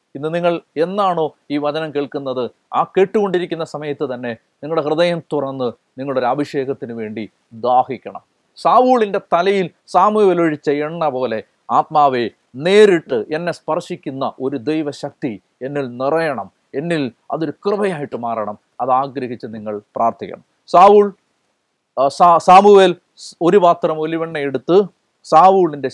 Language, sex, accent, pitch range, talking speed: Malayalam, male, native, 145-200 Hz, 100 wpm